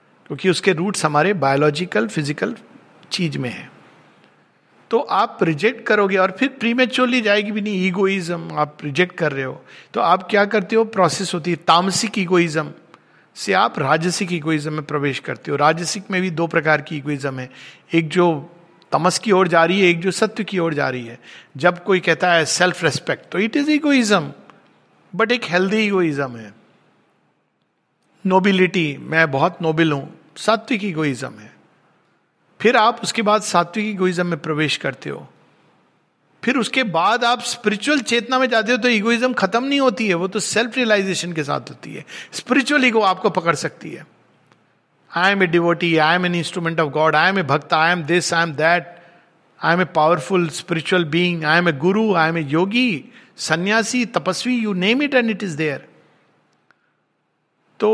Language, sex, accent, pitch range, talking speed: Hindi, male, native, 160-215 Hz, 175 wpm